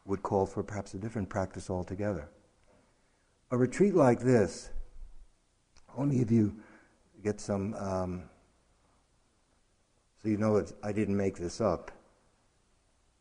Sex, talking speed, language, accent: male, 120 wpm, English, American